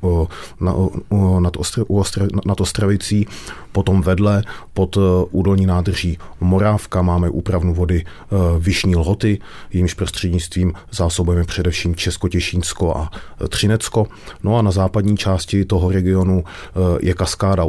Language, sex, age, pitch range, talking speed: Czech, male, 40-59, 90-95 Hz, 105 wpm